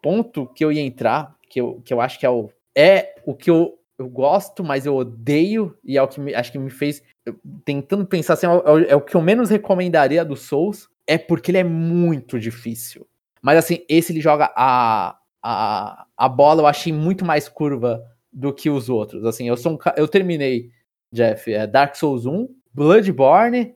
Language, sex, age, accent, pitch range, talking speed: Portuguese, male, 20-39, Brazilian, 135-180 Hz, 205 wpm